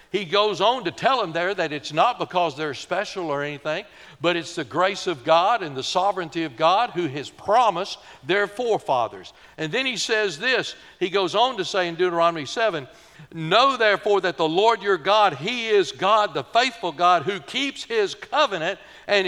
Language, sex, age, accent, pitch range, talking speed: English, male, 60-79, American, 160-205 Hz, 195 wpm